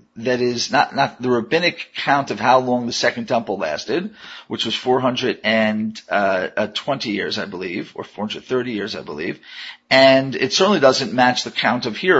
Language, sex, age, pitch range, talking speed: English, male, 40-59, 115-150 Hz, 165 wpm